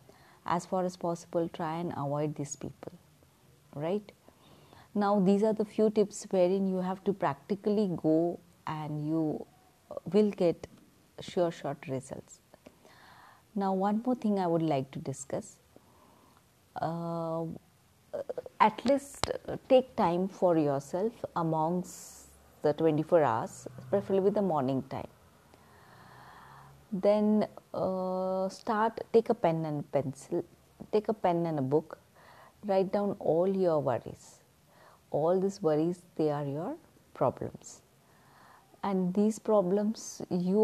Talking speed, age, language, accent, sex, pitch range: 125 wpm, 30-49, Marathi, native, female, 155-200 Hz